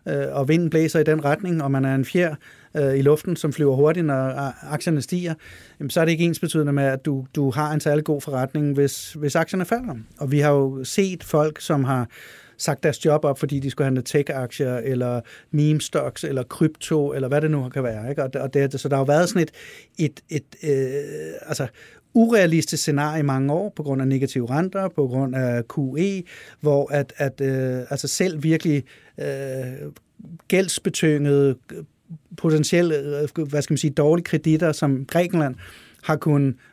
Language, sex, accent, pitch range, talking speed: Danish, male, native, 135-160 Hz, 190 wpm